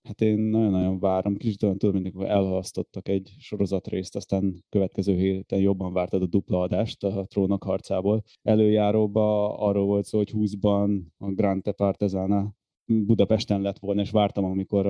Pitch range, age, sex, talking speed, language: 95-105 Hz, 20-39, male, 155 wpm, Hungarian